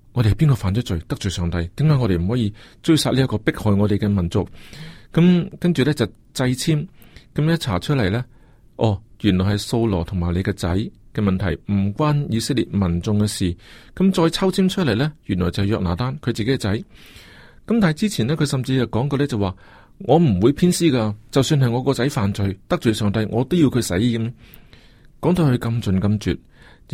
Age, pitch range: 40-59, 100-130 Hz